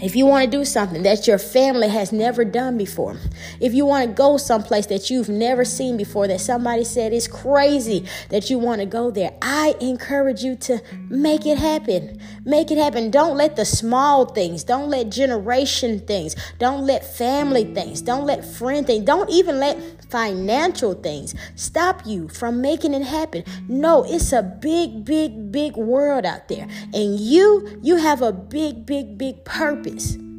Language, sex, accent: English, female, American